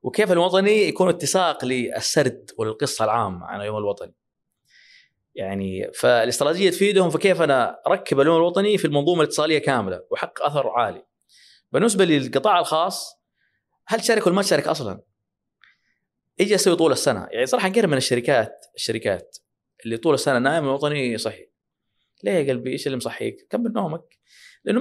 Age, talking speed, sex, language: 20-39, 145 wpm, male, Arabic